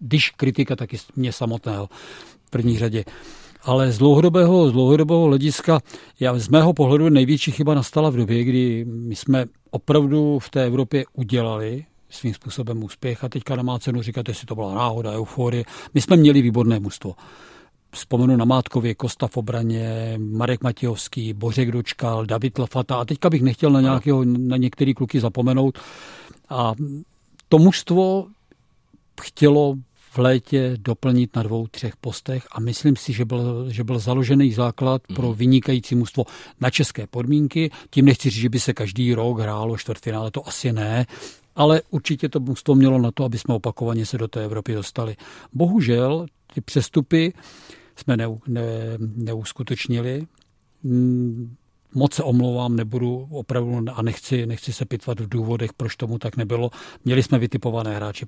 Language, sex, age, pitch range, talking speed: Czech, male, 50-69, 115-140 Hz, 155 wpm